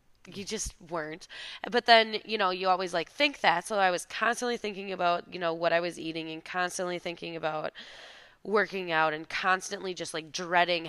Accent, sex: American, female